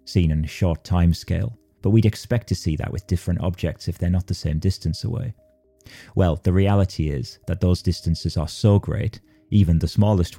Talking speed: 200 wpm